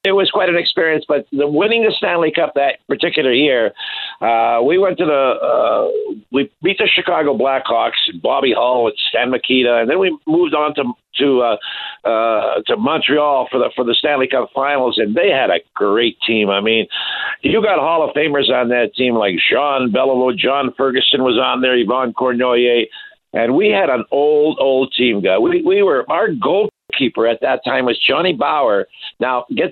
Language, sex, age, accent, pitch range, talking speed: English, male, 50-69, American, 125-175 Hz, 195 wpm